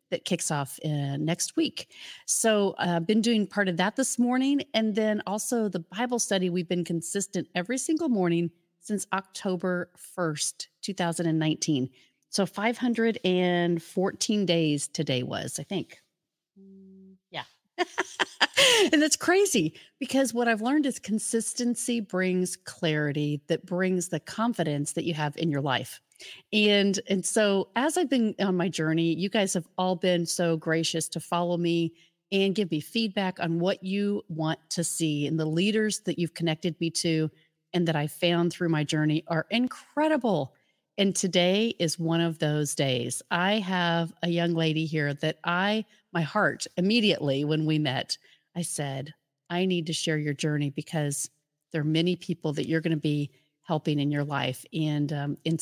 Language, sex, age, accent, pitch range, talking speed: English, female, 40-59, American, 160-205 Hz, 160 wpm